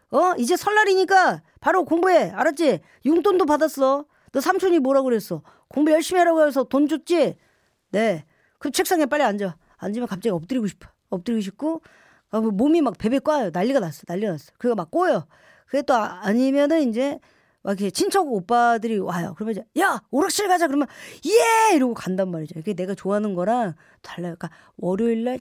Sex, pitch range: female, 195-315 Hz